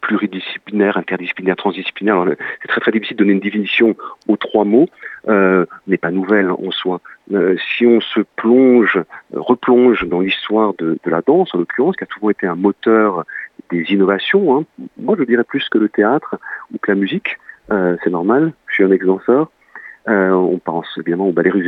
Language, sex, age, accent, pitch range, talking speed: French, male, 40-59, French, 95-125 Hz, 190 wpm